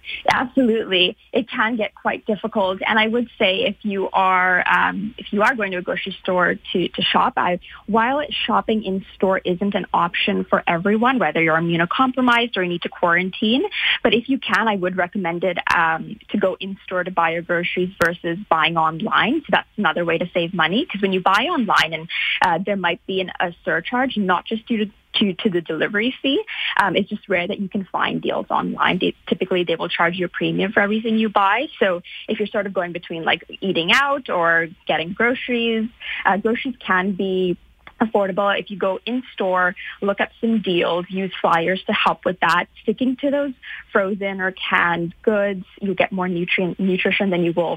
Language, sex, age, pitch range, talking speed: English, female, 20-39, 180-225 Hz, 205 wpm